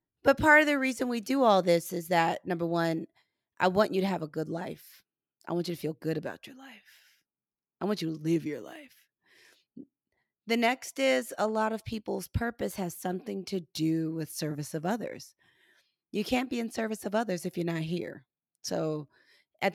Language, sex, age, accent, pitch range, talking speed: English, female, 30-49, American, 170-230 Hz, 200 wpm